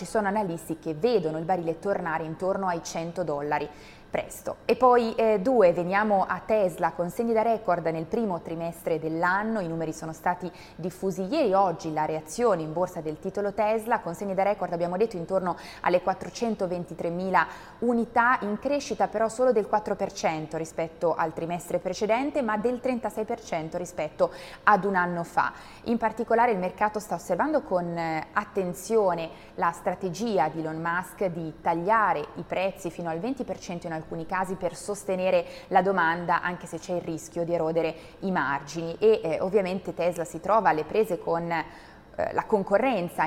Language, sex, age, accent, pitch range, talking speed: Italian, female, 20-39, native, 170-205 Hz, 165 wpm